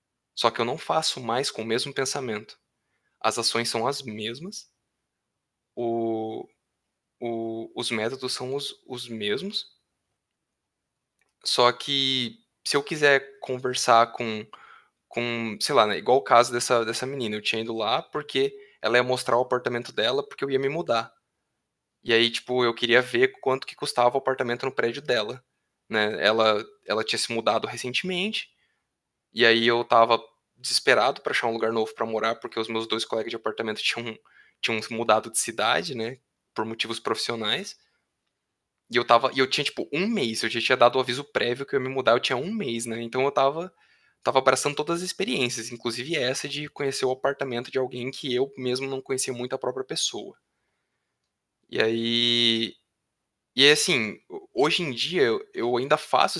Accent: Brazilian